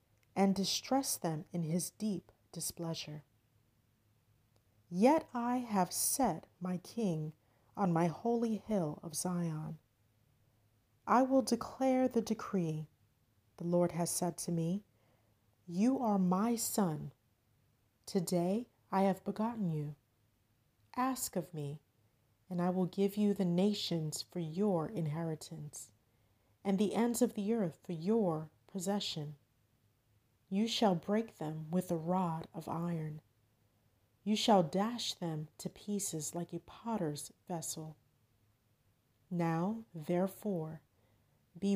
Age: 40-59